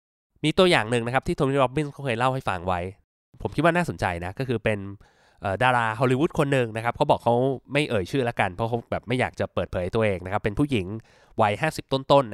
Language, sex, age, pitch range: Thai, male, 20-39, 115-150 Hz